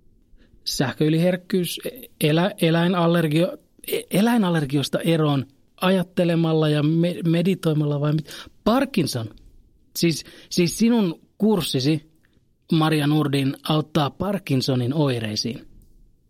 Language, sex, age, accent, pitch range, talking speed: Finnish, male, 30-49, native, 130-180 Hz, 70 wpm